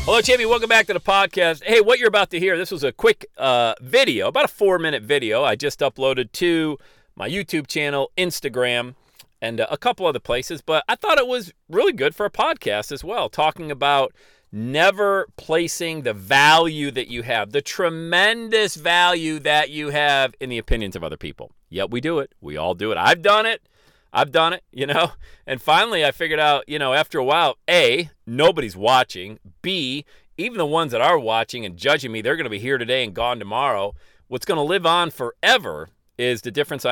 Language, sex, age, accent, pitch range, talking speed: English, male, 40-59, American, 130-195 Hz, 205 wpm